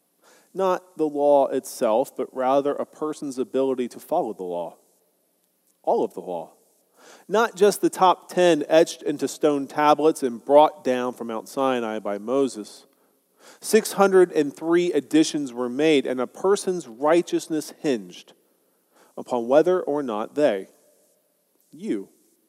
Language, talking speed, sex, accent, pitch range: English, 130 wpm, male, American, 125-165 Hz